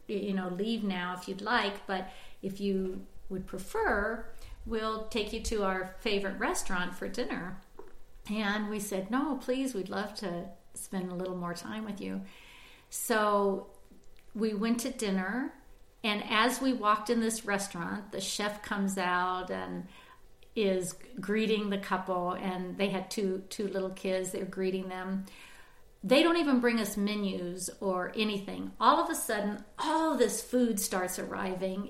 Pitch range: 190-230 Hz